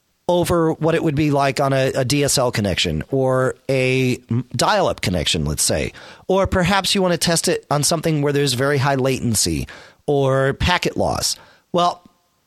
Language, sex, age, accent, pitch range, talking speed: English, male, 40-59, American, 125-165 Hz, 175 wpm